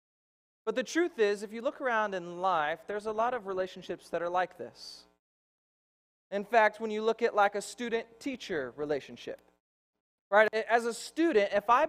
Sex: male